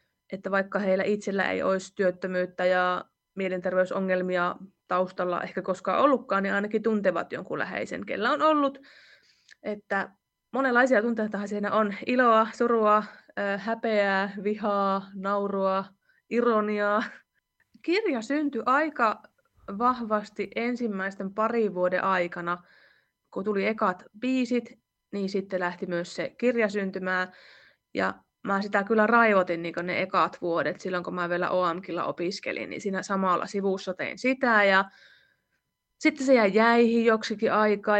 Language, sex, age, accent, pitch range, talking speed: English, female, 20-39, Finnish, 195-220 Hz, 120 wpm